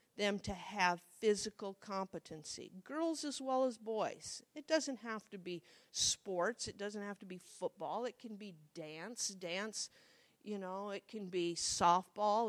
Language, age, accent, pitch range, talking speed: English, 50-69, American, 195-255 Hz, 160 wpm